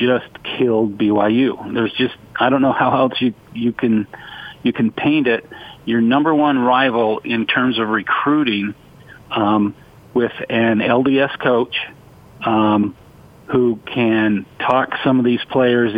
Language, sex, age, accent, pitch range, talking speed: English, male, 50-69, American, 110-125 Hz, 145 wpm